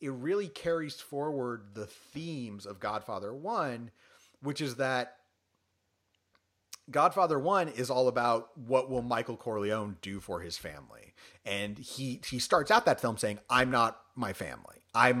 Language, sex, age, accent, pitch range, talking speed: English, male, 30-49, American, 95-125 Hz, 150 wpm